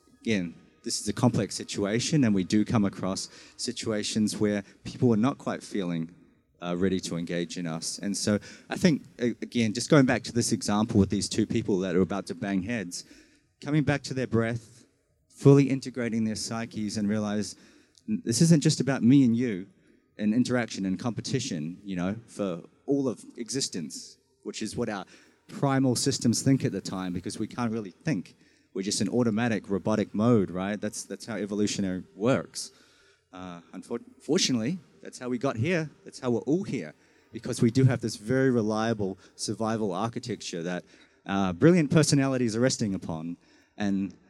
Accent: Australian